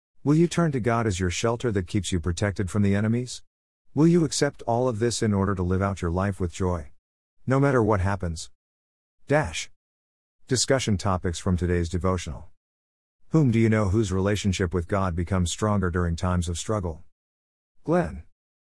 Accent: American